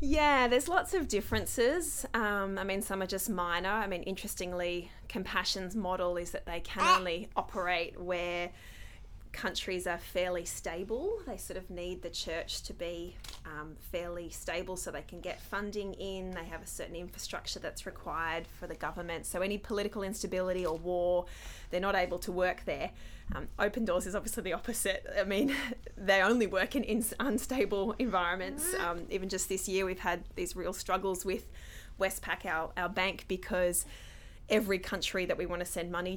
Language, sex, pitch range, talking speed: English, female, 175-205 Hz, 180 wpm